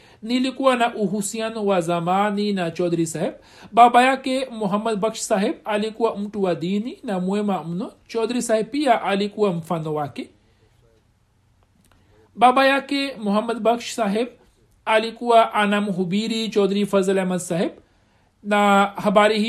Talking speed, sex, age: 110 wpm, male, 60-79